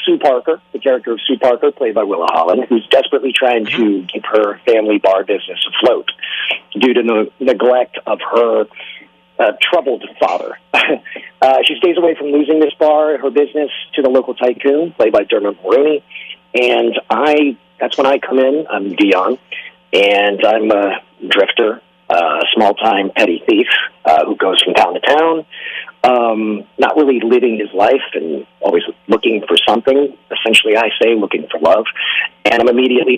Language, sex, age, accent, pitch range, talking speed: English, male, 40-59, American, 120-180 Hz, 165 wpm